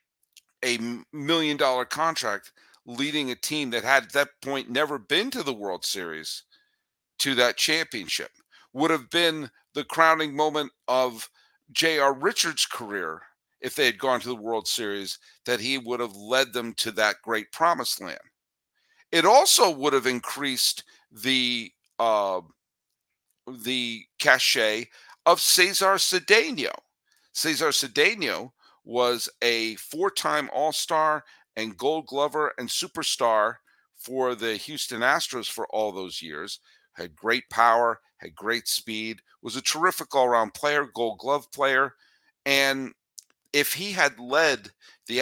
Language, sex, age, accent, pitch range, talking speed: English, male, 50-69, American, 120-155 Hz, 135 wpm